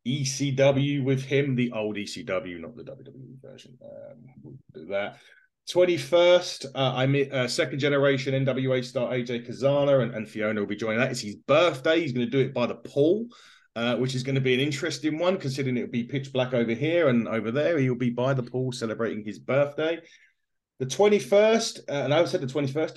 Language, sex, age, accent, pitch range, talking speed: English, male, 30-49, British, 120-145 Hz, 205 wpm